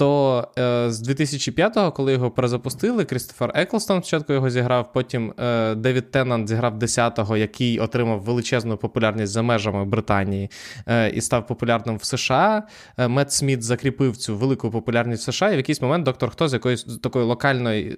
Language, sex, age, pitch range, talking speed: Ukrainian, male, 20-39, 115-140 Hz, 165 wpm